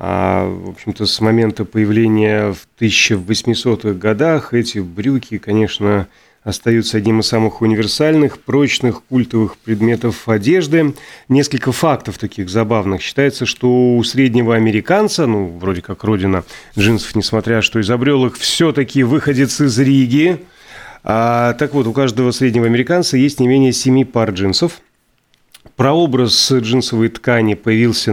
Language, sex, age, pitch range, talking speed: Russian, male, 30-49, 110-130 Hz, 125 wpm